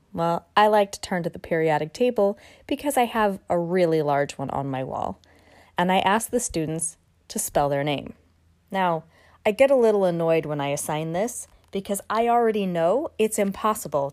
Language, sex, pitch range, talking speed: English, female, 155-205 Hz, 185 wpm